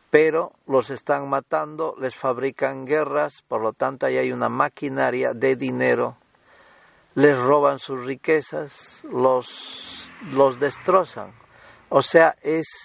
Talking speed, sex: 120 wpm, male